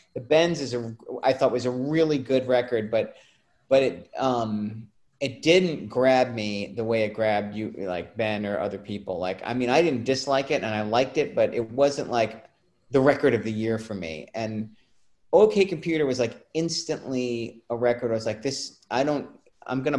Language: English